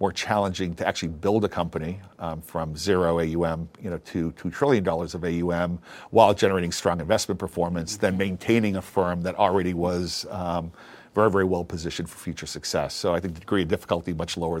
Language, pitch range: English, 85-100 Hz